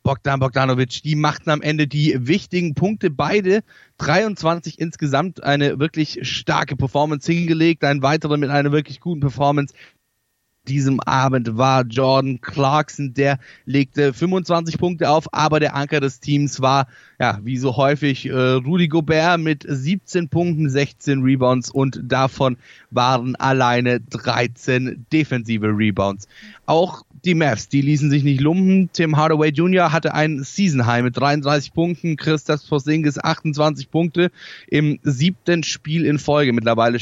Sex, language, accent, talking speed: male, German, German, 140 wpm